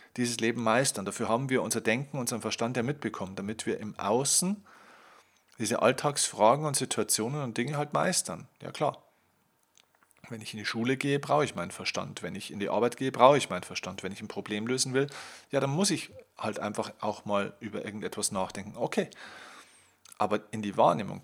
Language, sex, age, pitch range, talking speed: German, male, 40-59, 100-130 Hz, 190 wpm